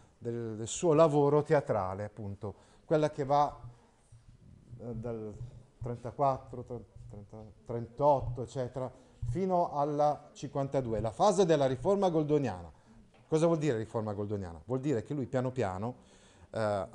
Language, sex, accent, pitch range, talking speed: Italian, male, native, 115-170 Hz, 115 wpm